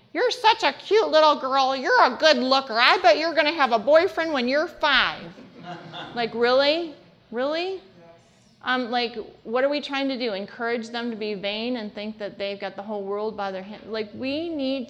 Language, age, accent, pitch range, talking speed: English, 30-49, American, 205-275 Hz, 205 wpm